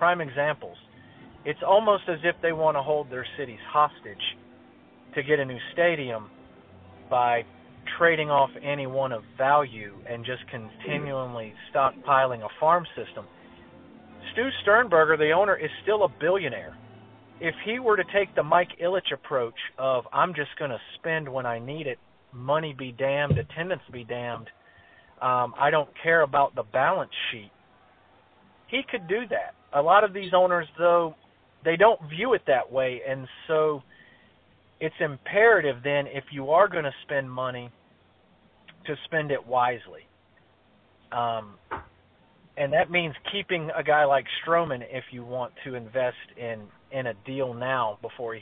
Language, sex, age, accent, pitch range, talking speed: English, male, 40-59, American, 125-160 Hz, 155 wpm